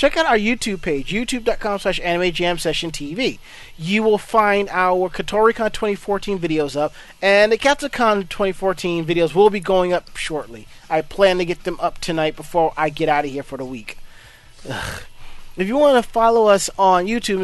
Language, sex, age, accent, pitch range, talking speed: English, male, 30-49, American, 175-215 Hz, 180 wpm